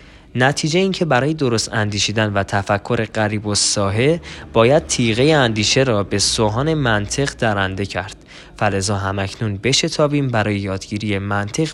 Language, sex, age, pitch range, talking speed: Persian, male, 20-39, 105-145 Hz, 130 wpm